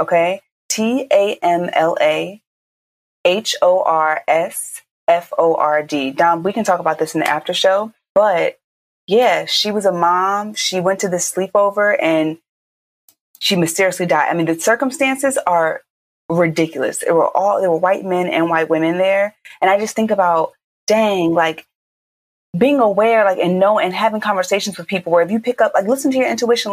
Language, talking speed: English, 185 wpm